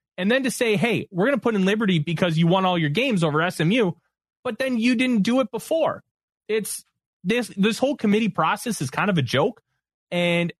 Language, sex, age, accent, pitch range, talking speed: English, male, 30-49, American, 165-225 Hz, 210 wpm